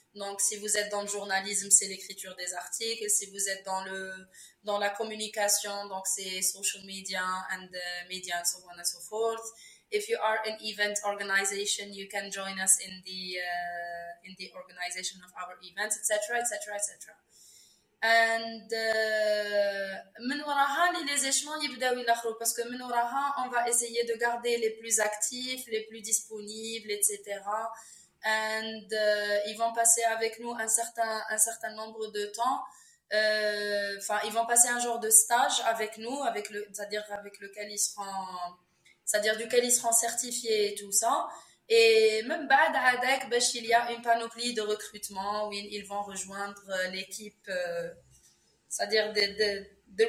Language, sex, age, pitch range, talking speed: English, female, 20-39, 195-230 Hz, 160 wpm